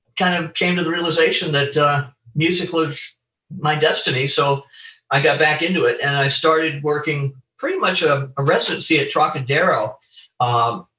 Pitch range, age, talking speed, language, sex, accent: 130-155 Hz, 50-69, 165 wpm, English, male, American